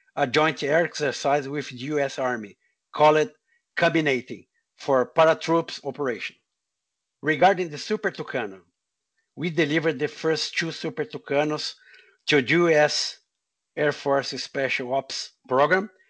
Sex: male